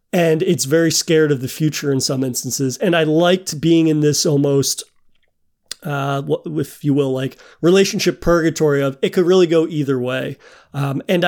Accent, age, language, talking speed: American, 30-49, English, 175 wpm